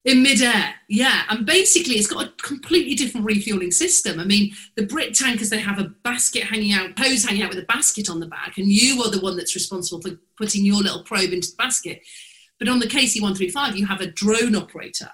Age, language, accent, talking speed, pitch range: 40-59, English, British, 220 wpm, 180-225 Hz